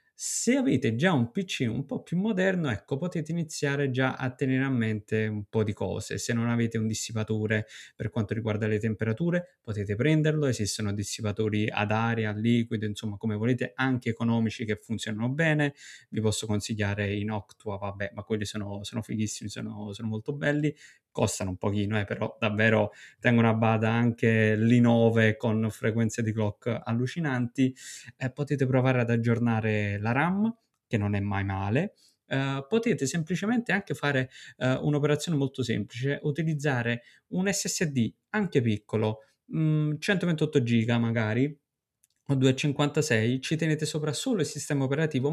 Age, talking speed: 20-39, 155 wpm